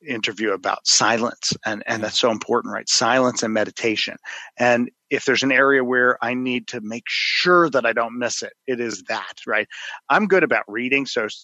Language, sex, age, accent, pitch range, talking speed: English, male, 40-59, American, 115-135 Hz, 195 wpm